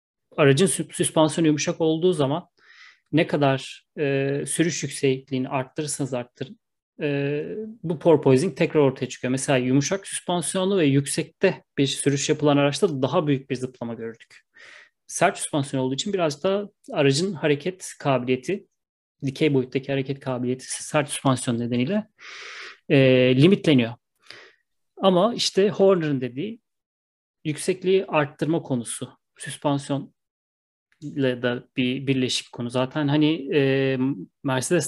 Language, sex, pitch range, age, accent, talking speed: Turkish, male, 135-175 Hz, 30-49, native, 115 wpm